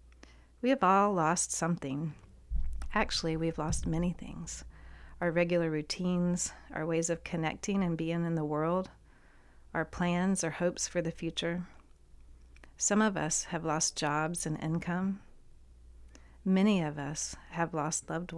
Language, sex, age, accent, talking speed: English, female, 40-59, American, 140 wpm